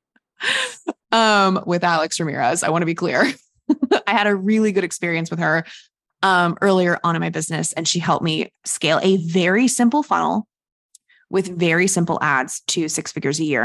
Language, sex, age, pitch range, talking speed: English, female, 20-39, 175-235 Hz, 180 wpm